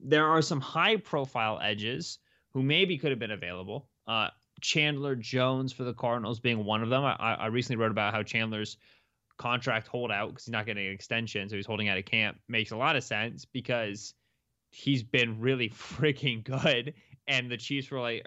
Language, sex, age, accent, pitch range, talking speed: English, male, 20-39, American, 105-145 Hz, 190 wpm